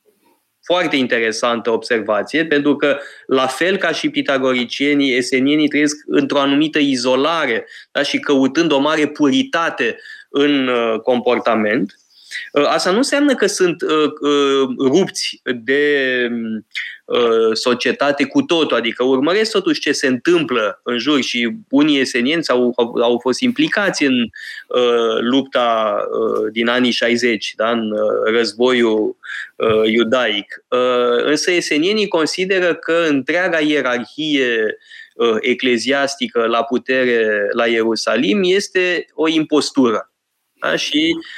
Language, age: Romanian, 20-39